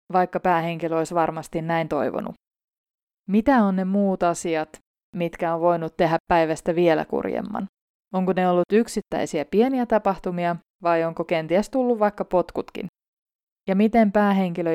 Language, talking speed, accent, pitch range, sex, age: Finnish, 135 wpm, native, 170-210 Hz, female, 20-39